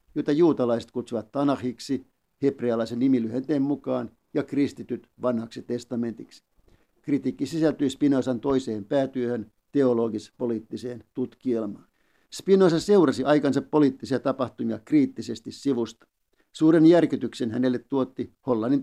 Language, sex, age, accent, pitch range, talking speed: Finnish, male, 60-79, native, 120-140 Hz, 95 wpm